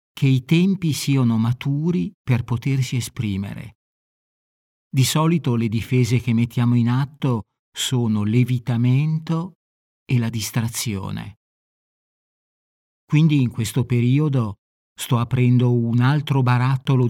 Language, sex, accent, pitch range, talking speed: Italian, male, native, 110-135 Hz, 105 wpm